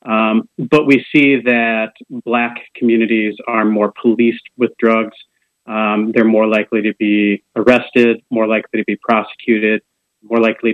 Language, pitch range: English, 110-125 Hz